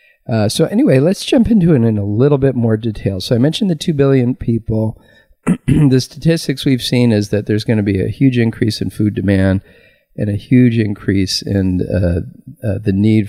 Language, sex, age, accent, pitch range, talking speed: English, male, 50-69, American, 90-115 Hz, 205 wpm